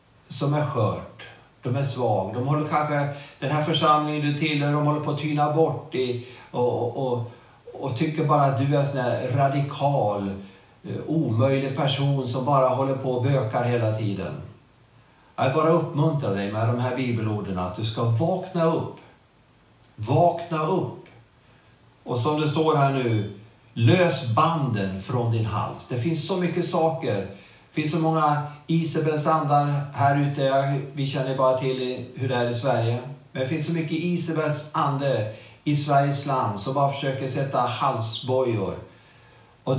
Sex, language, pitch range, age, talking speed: male, Swedish, 120-150 Hz, 50-69, 165 wpm